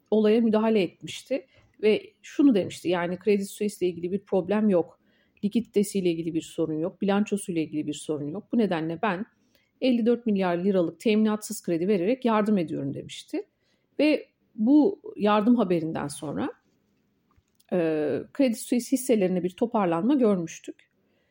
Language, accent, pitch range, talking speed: Turkish, native, 185-245 Hz, 130 wpm